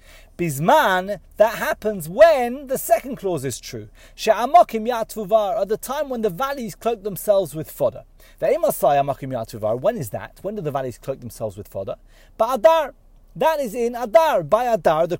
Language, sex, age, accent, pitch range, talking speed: English, male, 30-49, British, 160-255 Hz, 170 wpm